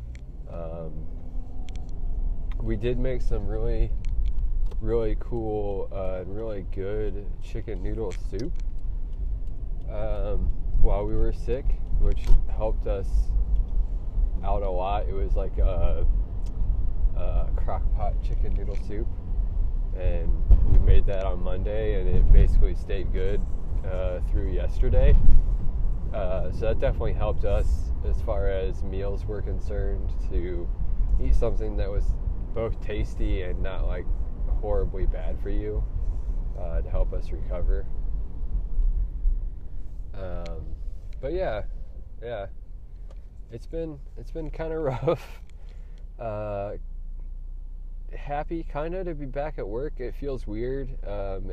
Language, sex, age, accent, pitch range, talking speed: English, male, 20-39, American, 85-105 Hz, 120 wpm